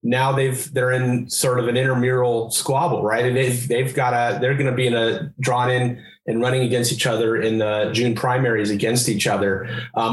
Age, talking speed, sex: 30-49, 200 wpm, male